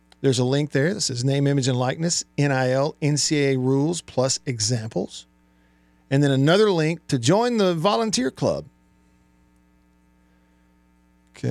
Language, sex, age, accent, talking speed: English, male, 50-69, American, 130 wpm